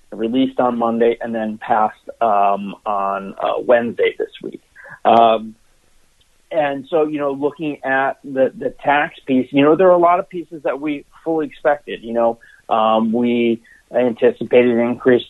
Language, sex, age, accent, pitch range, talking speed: English, male, 40-59, American, 120-150 Hz, 165 wpm